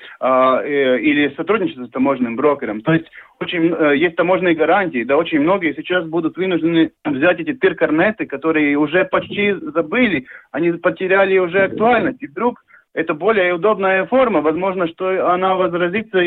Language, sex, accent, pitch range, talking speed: Russian, male, native, 150-200 Hz, 135 wpm